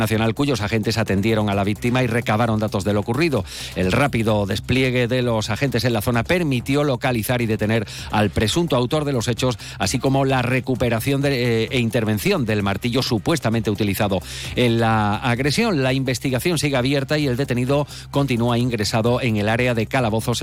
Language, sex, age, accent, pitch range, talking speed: Spanish, male, 40-59, Spanish, 105-140 Hz, 180 wpm